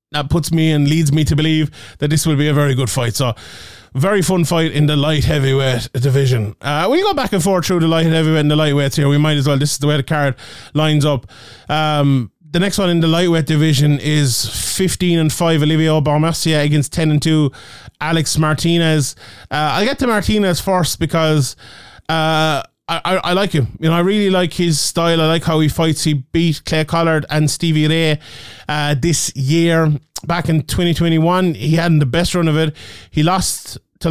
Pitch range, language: 145-165 Hz, English